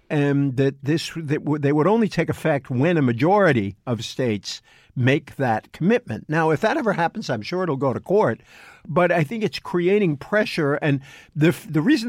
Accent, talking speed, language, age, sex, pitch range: American, 200 wpm, English, 50-69, male, 130-175 Hz